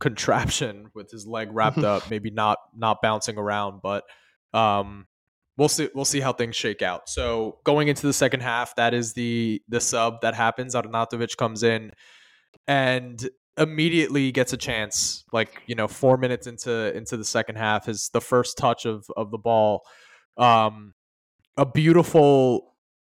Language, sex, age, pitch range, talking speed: English, male, 20-39, 110-125 Hz, 165 wpm